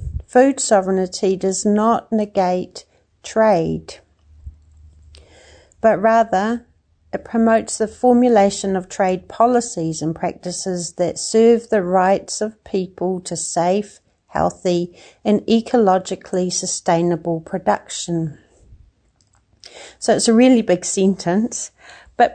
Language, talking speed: English, 100 wpm